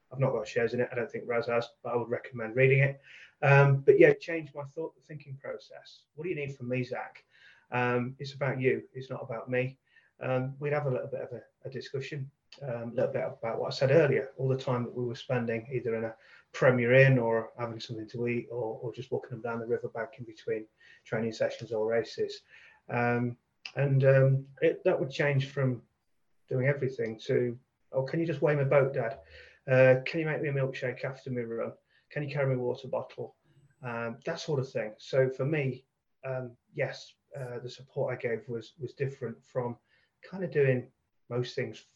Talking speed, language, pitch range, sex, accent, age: 215 wpm, English, 120-140 Hz, male, British, 30-49